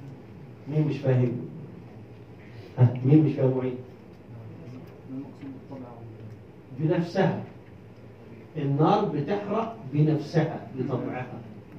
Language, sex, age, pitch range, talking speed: Arabic, male, 50-69, 120-180 Hz, 70 wpm